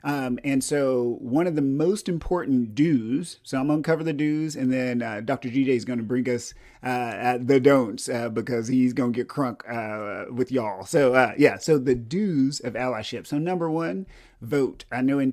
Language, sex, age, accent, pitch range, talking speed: English, male, 30-49, American, 120-145 Hz, 205 wpm